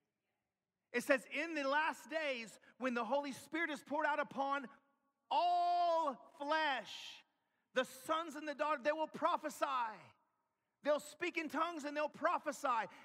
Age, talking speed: 40-59, 145 wpm